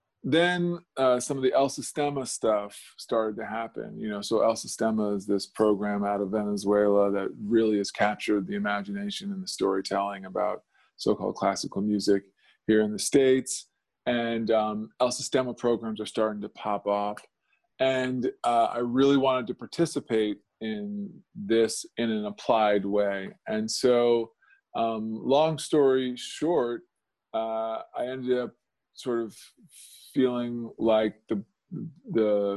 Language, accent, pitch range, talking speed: English, American, 110-145 Hz, 145 wpm